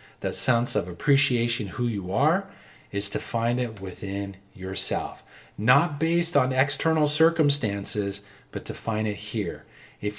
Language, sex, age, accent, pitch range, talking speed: English, male, 40-59, American, 100-135 Hz, 140 wpm